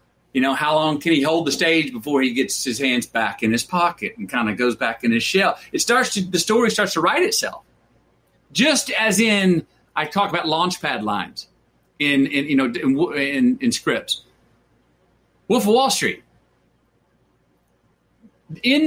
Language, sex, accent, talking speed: Italian, male, American, 175 wpm